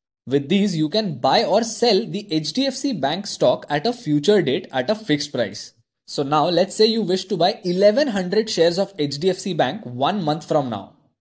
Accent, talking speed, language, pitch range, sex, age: native, 195 wpm, Hindi, 150-220 Hz, male, 20-39